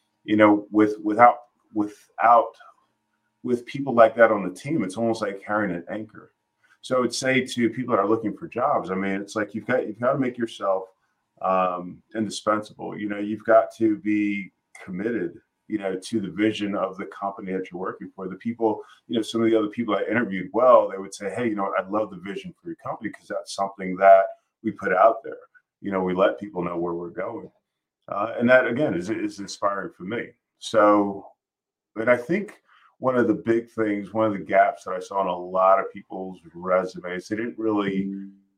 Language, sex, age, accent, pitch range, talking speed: English, male, 30-49, American, 95-115 Hz, 215 wpm